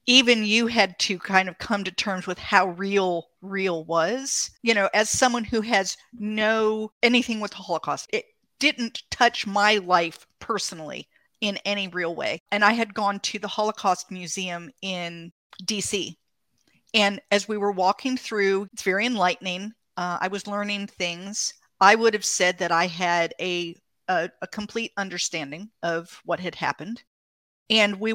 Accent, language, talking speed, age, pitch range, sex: American, English, 165 wpm, 50-69, 180-220 Hz, female